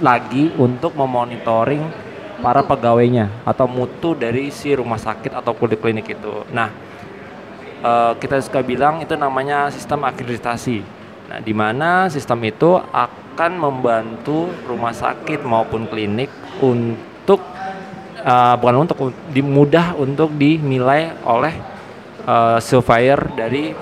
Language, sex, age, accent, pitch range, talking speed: Indonesian, male, 20-39, native, 115-140 Hz, 115 wpm